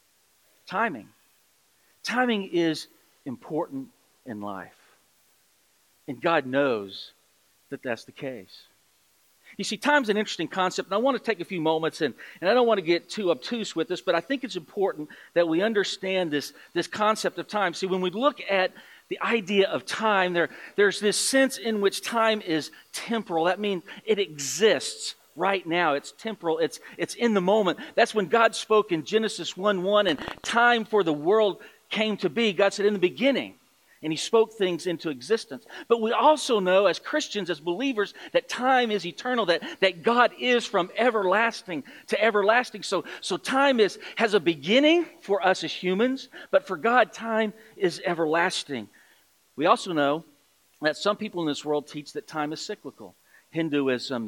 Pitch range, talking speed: 165-225 Hz, 175 wpm